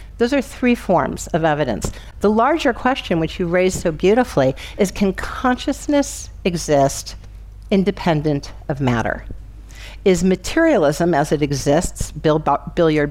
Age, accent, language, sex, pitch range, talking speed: 50-69, American, English, female, 145-195 Hz, 125 wpm